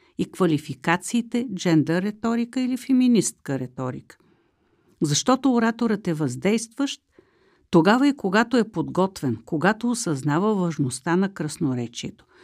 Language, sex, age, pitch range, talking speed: Bulgarian, female, 50-69, 160-230 Hz, 95 wpm